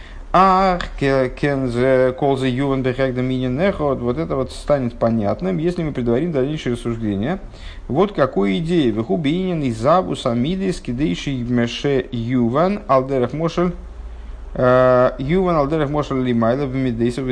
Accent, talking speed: native, 115 wpm